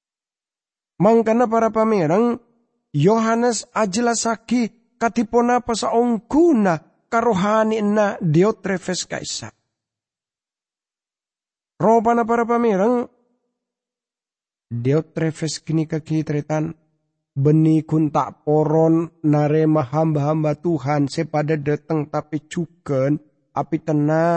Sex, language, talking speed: male, English, 75 wpm